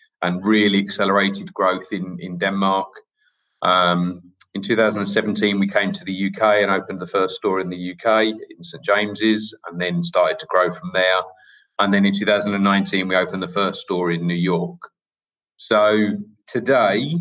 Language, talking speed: English, 165 wpm